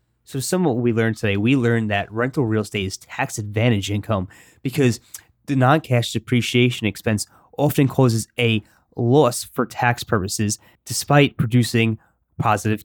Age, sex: 20-39, male